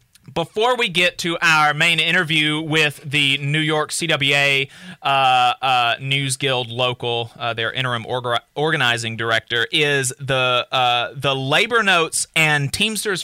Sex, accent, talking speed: male, American, 140 wpm